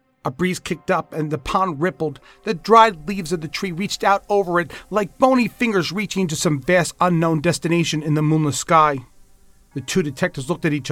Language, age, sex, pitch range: English, 40-59, male, 130-185 Hz